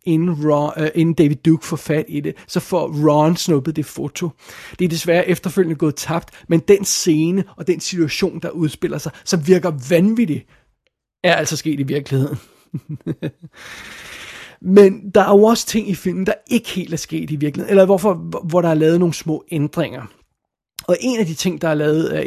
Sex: male